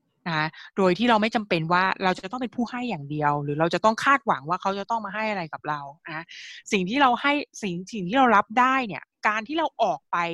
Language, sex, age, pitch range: Thai, female, 20-39, 165-210 Hz